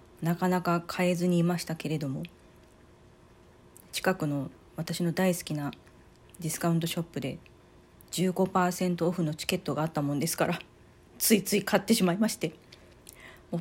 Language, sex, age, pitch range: Japanese, female, 40-59, 155-200 Hz